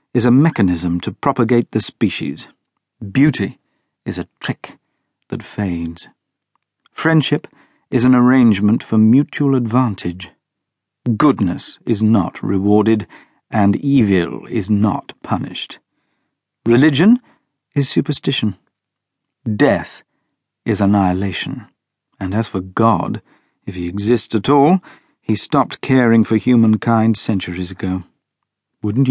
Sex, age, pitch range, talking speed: male, 50-69, 95-125 Hz, 105 wpm